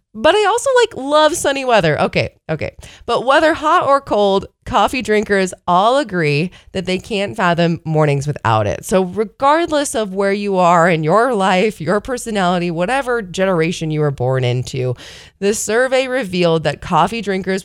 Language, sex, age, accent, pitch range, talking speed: English, female, 20-39, American, 150-205 Hz, 165 wpm